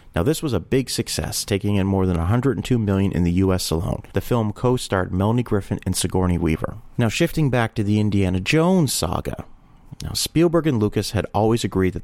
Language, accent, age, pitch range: English, American, 40-59, 90-125 Hz